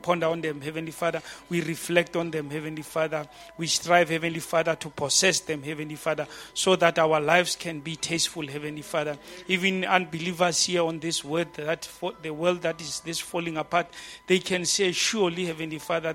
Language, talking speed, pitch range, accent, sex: English, 180 wpm, 150-170 Hz, South African, male